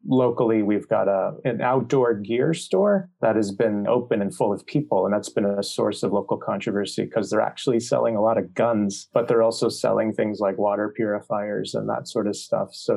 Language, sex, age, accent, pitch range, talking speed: English, male, 30-49, American, 105-115 Hz, 215 wpm